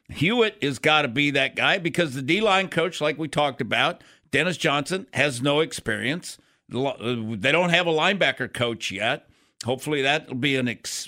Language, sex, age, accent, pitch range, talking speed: English, male, 50-69, American, 140-185 Hz, 180 wpm